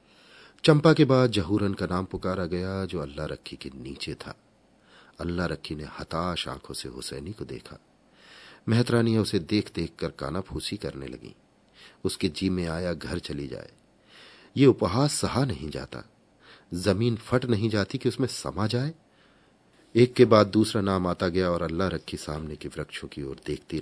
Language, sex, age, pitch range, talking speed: Hindi, male, 40-59, 80-115 Hz, 170 wpm